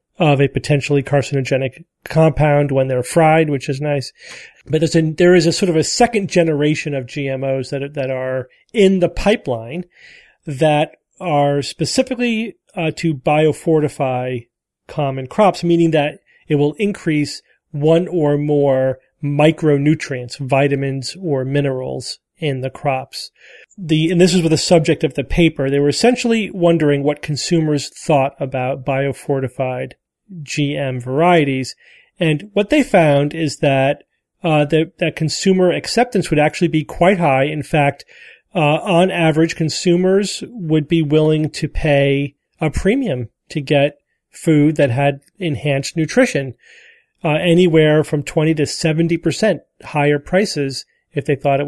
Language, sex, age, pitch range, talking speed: English, male, 40-59, 140-170 Hz, 140 wpm